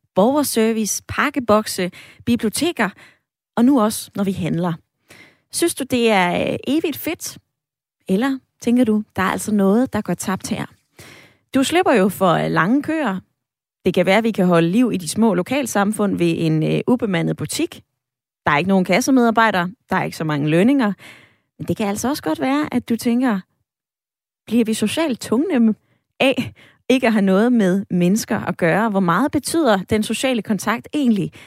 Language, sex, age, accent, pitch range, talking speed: Danish, female, 20-39, native, 185-260 Hz, 170 wpm